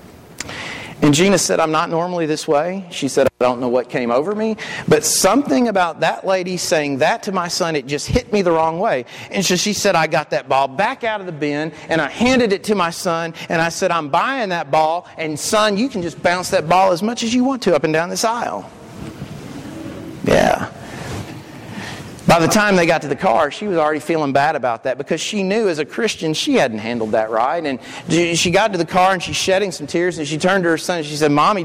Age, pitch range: 40-59, 165-220 Hz